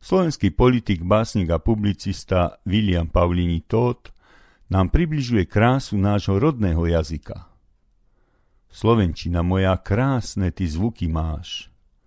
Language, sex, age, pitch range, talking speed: Slovak, male, 50-69, 85-110 Hz, 100 wpm